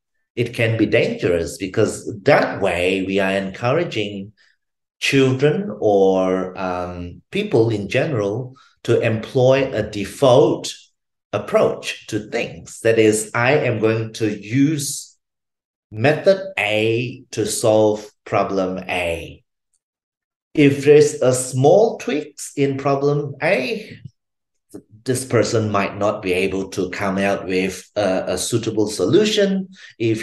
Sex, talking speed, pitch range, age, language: male, 115 wpm, 100-135 Hz, 30-49, English